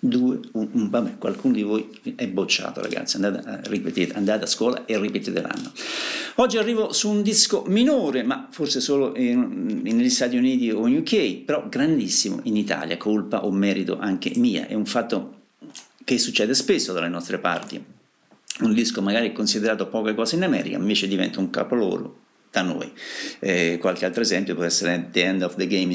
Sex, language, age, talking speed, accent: male, Italian, 50-69, 175 wpm, native